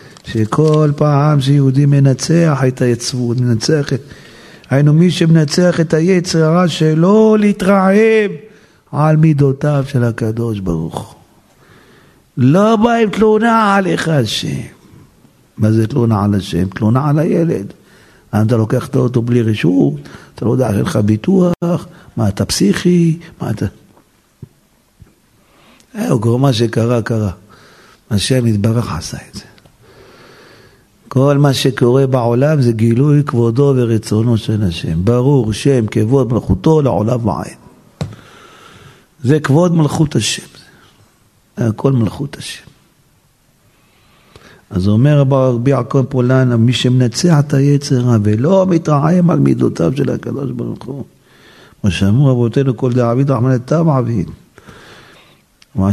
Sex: male